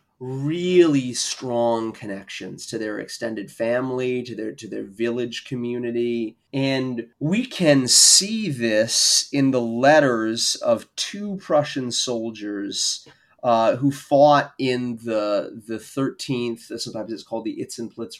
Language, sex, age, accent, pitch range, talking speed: English, male, 30-49, American, 115-150 Hz, 120 wpm